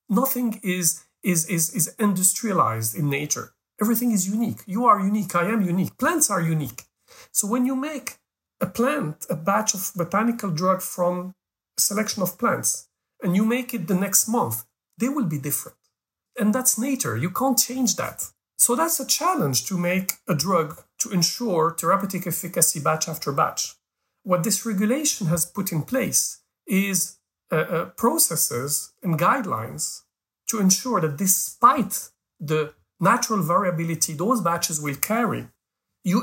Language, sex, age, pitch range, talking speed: English, male, 50-69, 160-225 Hz, 155 wpm